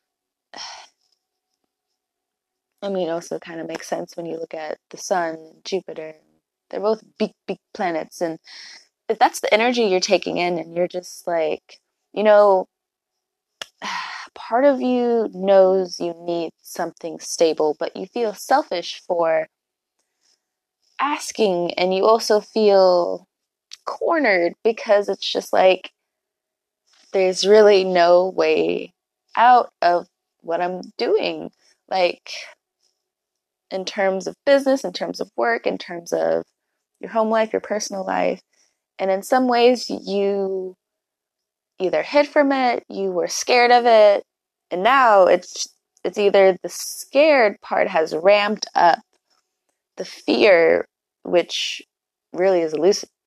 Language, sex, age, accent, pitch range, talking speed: English, female, 20-39, American, 175-255 Hz, 130 wpm